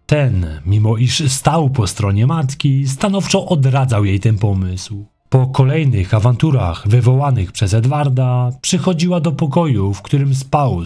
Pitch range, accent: 115-150 Hz, native